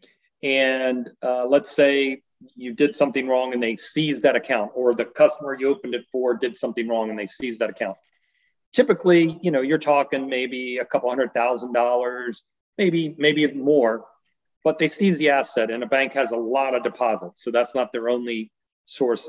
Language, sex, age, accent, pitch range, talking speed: English, male, 40-59, American, 120-150 Hz, 195 wpm